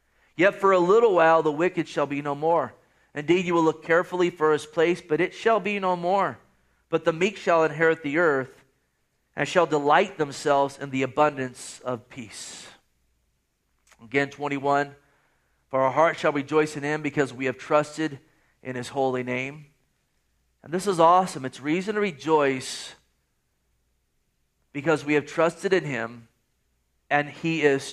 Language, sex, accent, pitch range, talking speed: English, male, American, 130-165 Hz, 160 wpm